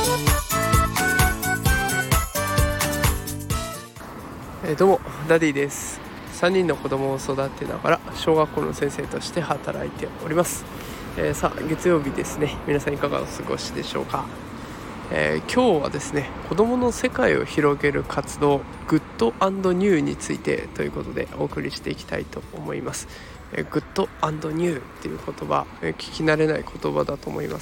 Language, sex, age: Japanese, male, 20-39